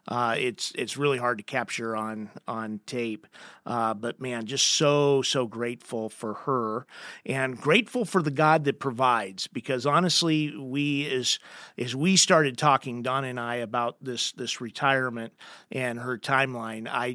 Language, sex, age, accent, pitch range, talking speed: English, male, 40-59, American, 125-155 Hz, 160 wpm